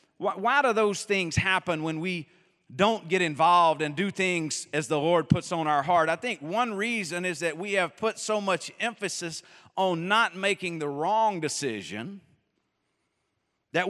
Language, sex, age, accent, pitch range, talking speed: English, male, 40-59, American, 170-215 Hz, 170 wpm